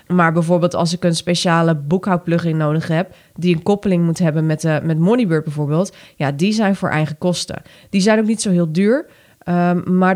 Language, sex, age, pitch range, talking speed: Dutch, female, 30-49, 170-205 Hz, 200 wpm